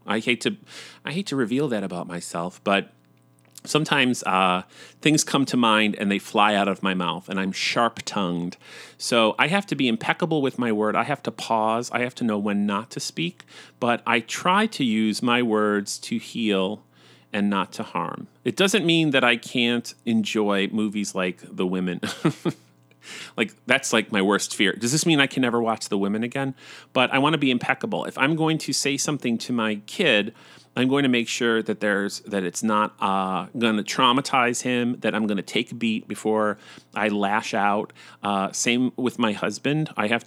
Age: 30-49